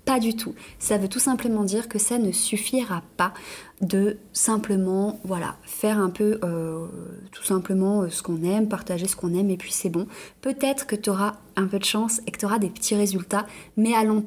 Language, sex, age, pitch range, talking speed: French, female, 20-39, 200-235 Hz, 220 wpm